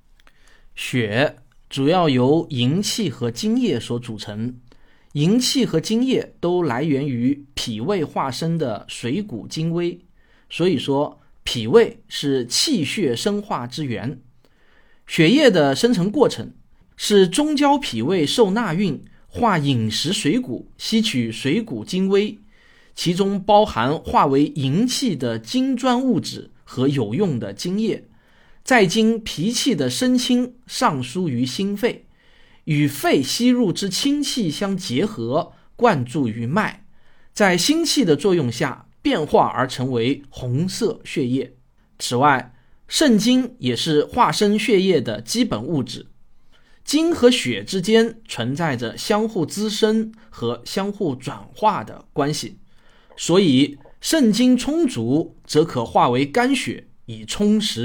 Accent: native